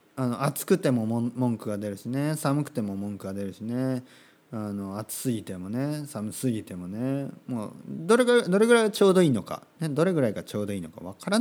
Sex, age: male, 40-59